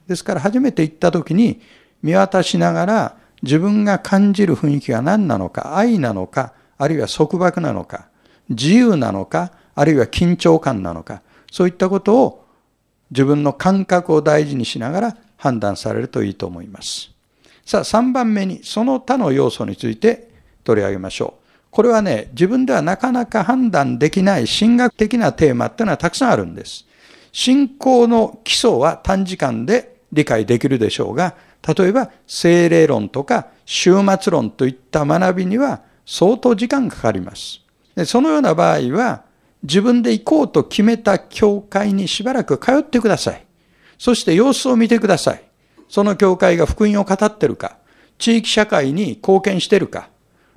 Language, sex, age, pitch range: Japanese, male, 60-79, 155-230 Hz